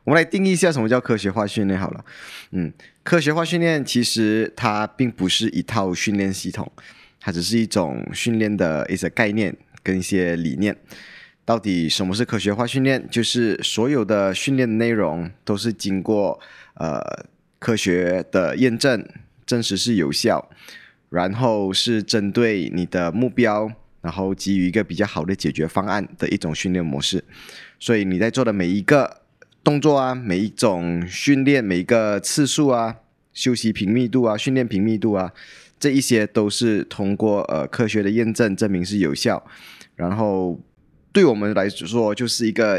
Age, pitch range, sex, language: 20-39, 95-120 Hz, male, Chinese